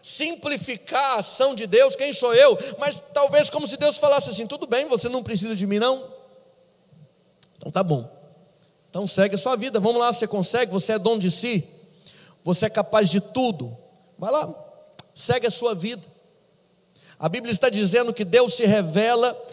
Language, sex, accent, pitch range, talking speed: Portuguese, male, Brazilian, 160-220 Hz, 180 wpm